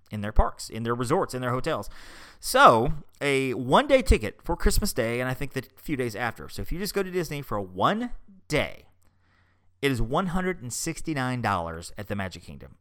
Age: 30-49